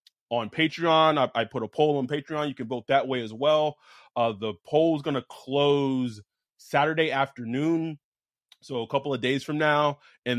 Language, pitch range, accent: English, 115-150 Hz, American